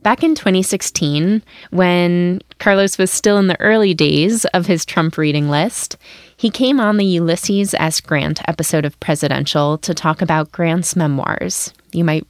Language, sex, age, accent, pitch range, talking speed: English, female, 20-39, American, 155-205 Hz, 160 wpm